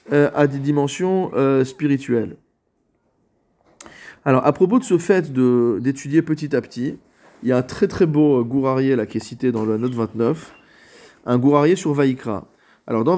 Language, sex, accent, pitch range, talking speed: French, male, French, 125-175 Hz, 175 wpm